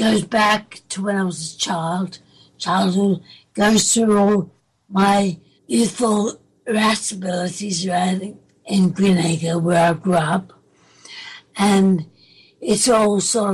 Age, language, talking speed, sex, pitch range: 60-79, English, 110 wpm, female, 180-210 Hz